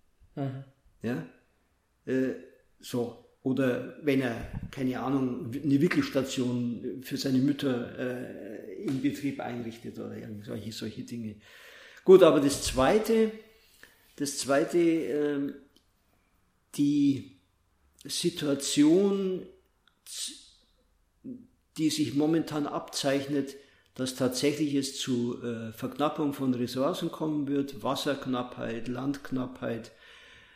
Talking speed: 75 wpm